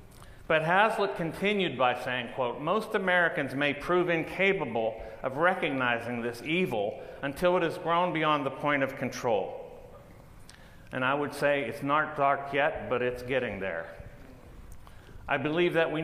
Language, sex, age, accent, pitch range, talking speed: English, male, 50-69, American, 120-155 Hz, 150 wpm